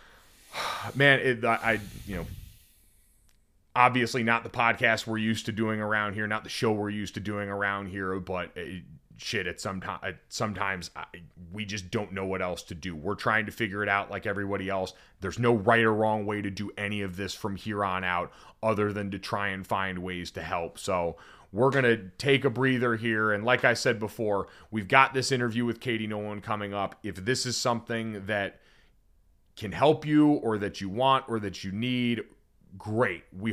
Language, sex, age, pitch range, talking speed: English, male, 30-49, 100-125 Hz, 200 wpm